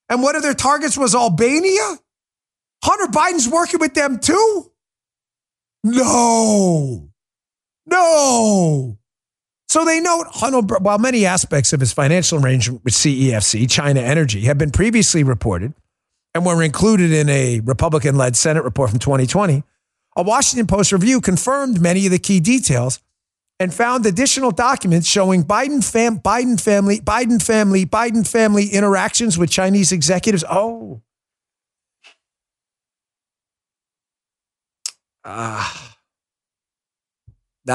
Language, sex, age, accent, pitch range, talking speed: English, male, 40-59, American, 130-220 Hz, 115 wpm